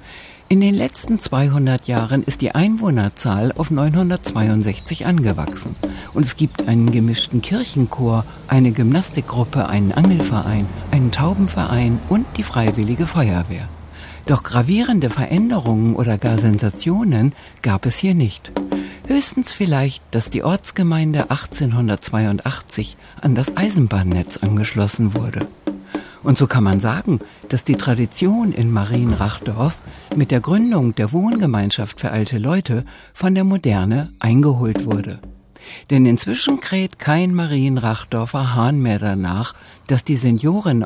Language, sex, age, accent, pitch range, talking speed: German, female, 60-79, German, 105-150 Hz, 120 wpm